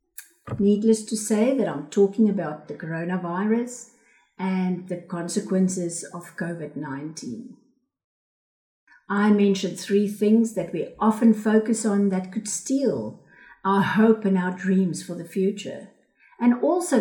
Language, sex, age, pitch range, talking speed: English, female, 50-69, 190-285 Hz, 125 wpm